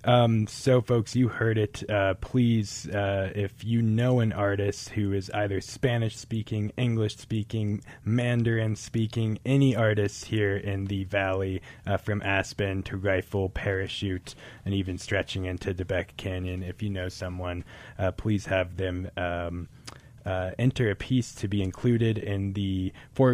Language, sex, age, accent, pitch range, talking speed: English, male, 20-39, American, 95-115 Hz, 155 wpm